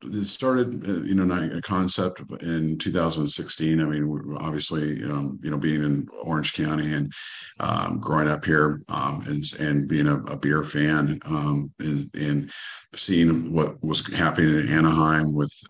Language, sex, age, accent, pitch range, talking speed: English, male, 50-69, American, 70-80 Hz, 160 wpm